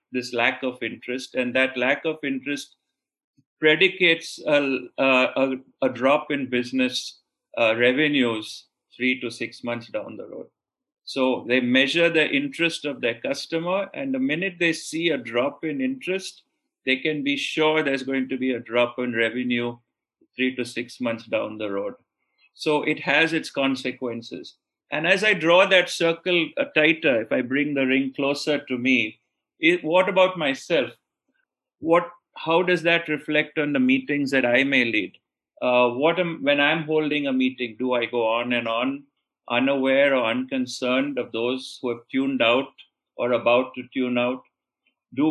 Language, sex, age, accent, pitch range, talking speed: English, male, 50-69, Indian, 125-155 Hz, 165 wpm